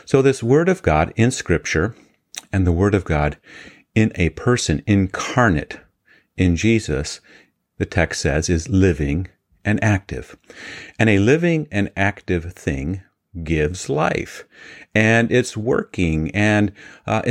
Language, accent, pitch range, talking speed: English, American, 80-110 Hz, 130 wpm